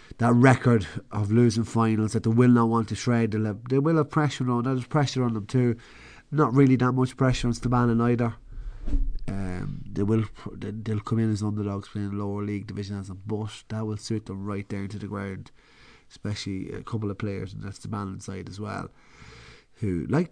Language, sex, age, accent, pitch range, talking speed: English, male, 30-49, Irish, 100-120 Hz, 215 wpm